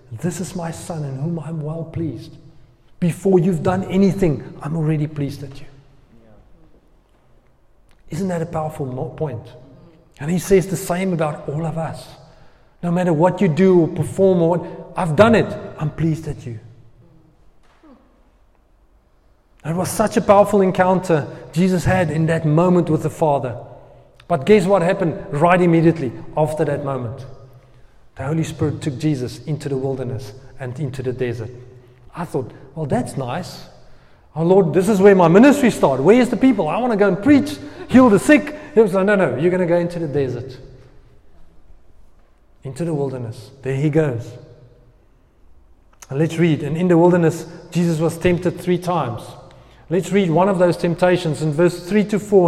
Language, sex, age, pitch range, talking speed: English, male, 30-49, 130-180 Hz, 170 wpm